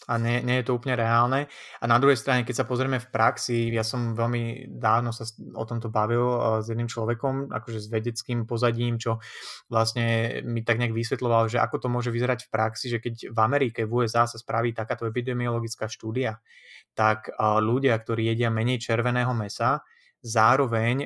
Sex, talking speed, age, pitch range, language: male, 180 wpm, 20-39, 110-125 Hz, Slovak